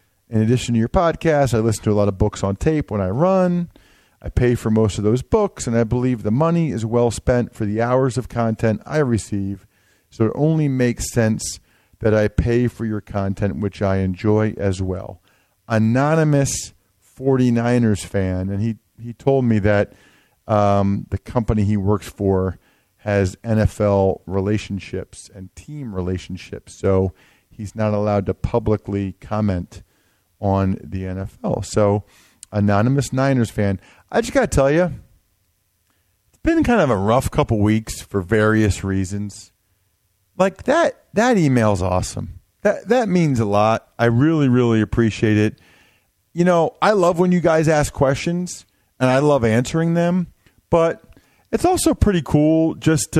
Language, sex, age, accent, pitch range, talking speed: English, male, 40-59, American, 100-135 Hz, 160 wpm